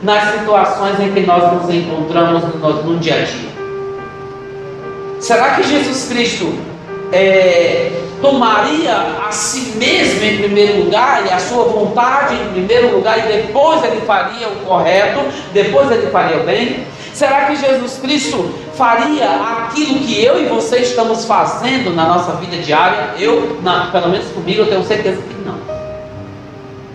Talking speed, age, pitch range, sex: 150 wpm, 40-59, 175-250 Hz, male